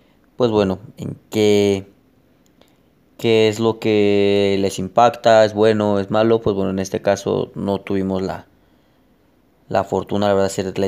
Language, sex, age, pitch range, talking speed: Spanish, male, 20-39, 95-110 Hz, 155 wpm